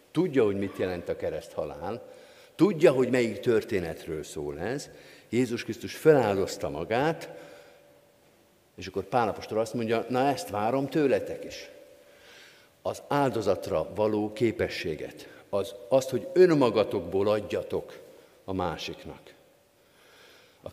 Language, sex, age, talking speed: Hungarian, male, 50-69, 115 wpm